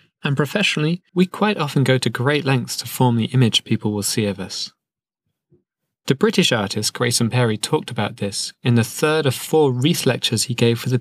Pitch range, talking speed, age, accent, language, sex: 115-140 Hz, 200 wpm, 20-39, British, English, male